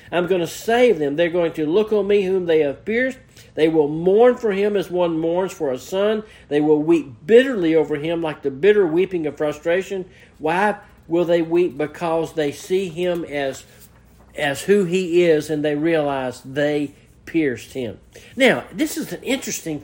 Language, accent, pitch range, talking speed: English, American, 150-195 Hz, 190 wpm